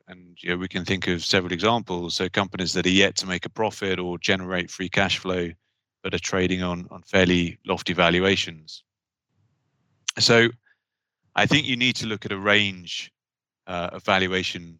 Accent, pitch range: British, 90-105 Hz